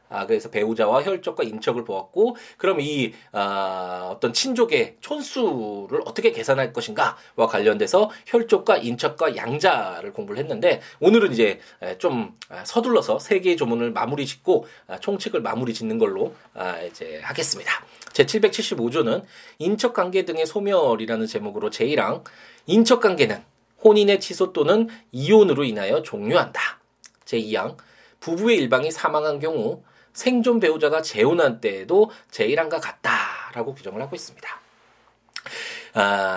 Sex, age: male, 20-39